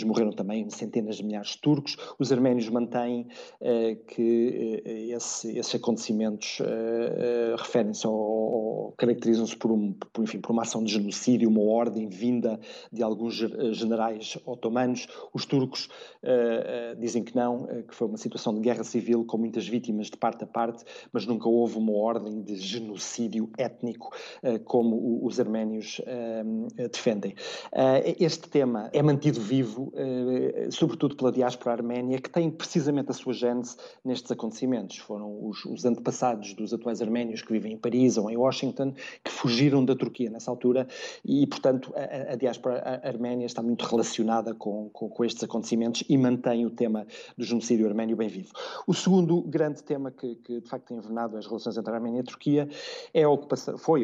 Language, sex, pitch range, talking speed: Portuguese, male, 110-125 Hz, 155 wpm